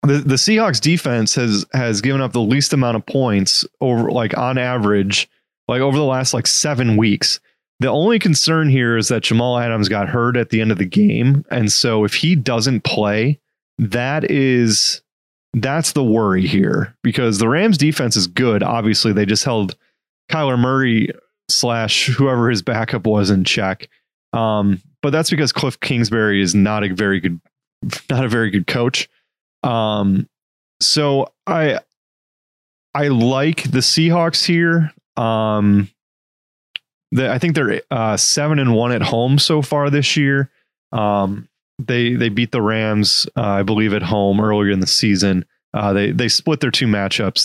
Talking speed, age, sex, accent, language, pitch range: 165 wpm, 20-39, male, American, English, 105-135 Hz